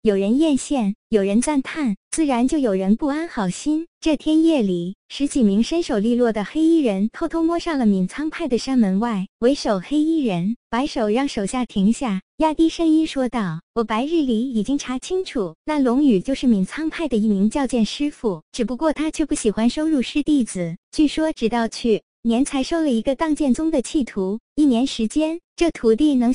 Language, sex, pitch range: Chinese, male, 215-305 Hz